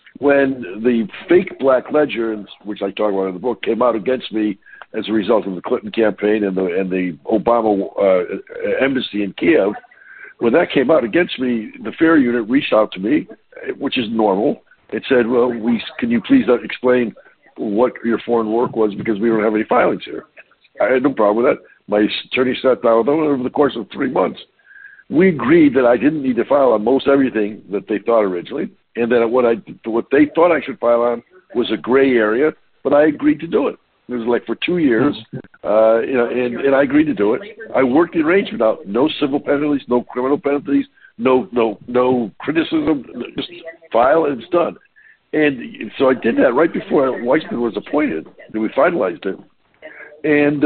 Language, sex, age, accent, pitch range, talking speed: English, male, 60-79, American, 115-150 Hz, 205 wpm